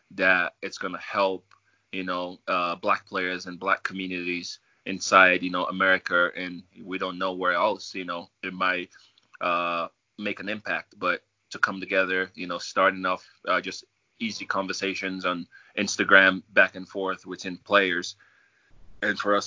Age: 20-39